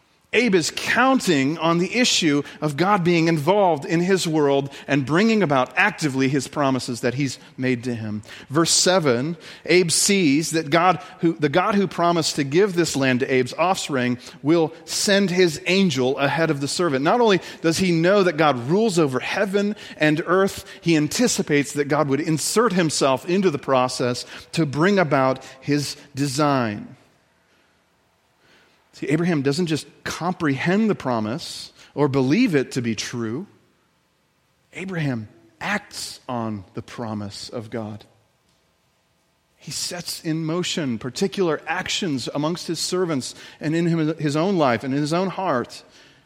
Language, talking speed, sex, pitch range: English, 150 wpm, male, 135-180 Hz